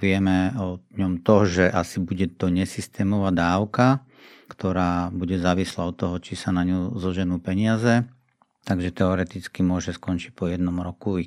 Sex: male